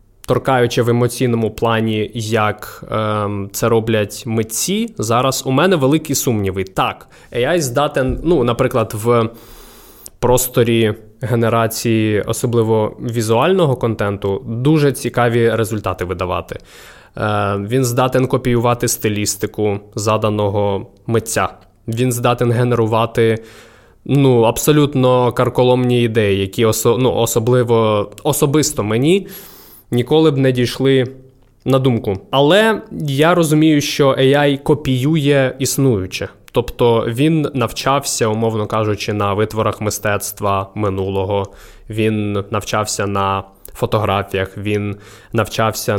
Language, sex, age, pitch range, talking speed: Ukrainian, male, 20-39, 105-130 Hz, 100 wpm